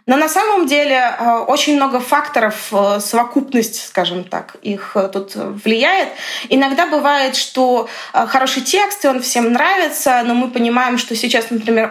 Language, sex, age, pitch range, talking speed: Russian, female, 20-39, 220-265 Hz, 140 wpm